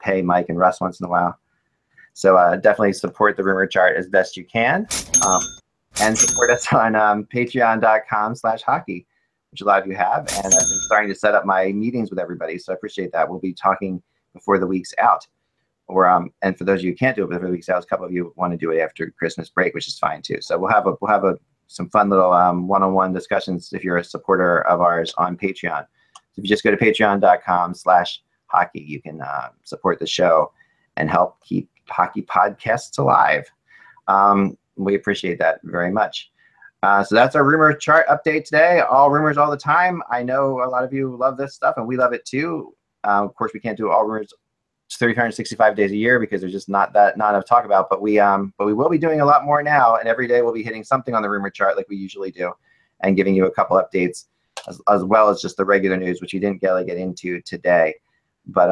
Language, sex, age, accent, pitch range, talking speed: English, male, 30-49, American, 90-115 Hz, 240 wpm